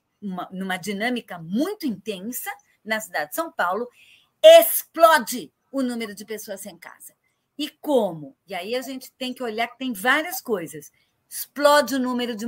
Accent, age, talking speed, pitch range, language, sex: Brazilian, 40-59, 160 wpm, 195-255 Hz, Portuguese, female